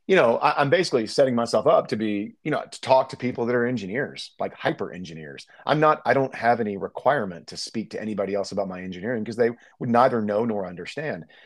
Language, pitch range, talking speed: English, 80-115 Hz, 225 wpm